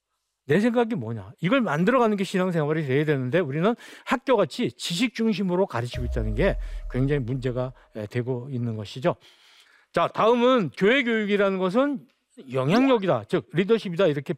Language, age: Korean, 50-69